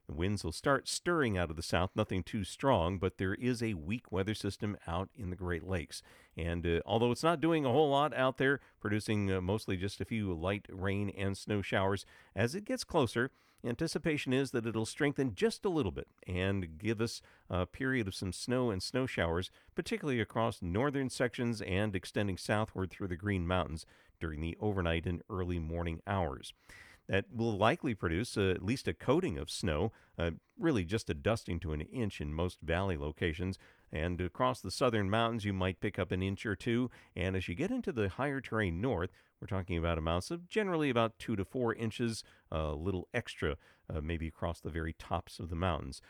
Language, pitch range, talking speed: English, 90-115 Hz, 205 wpm